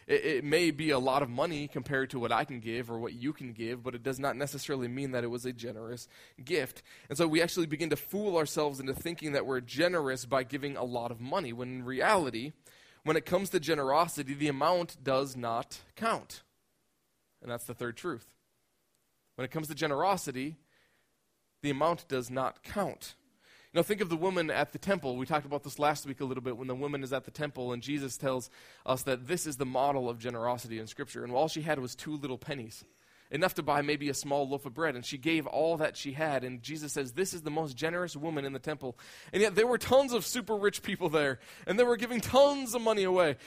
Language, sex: English, male